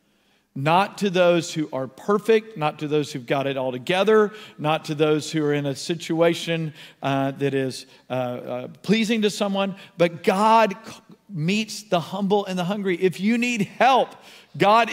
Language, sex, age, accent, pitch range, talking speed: English, male, 50-69, American, 165-200 Hz, 175 wpm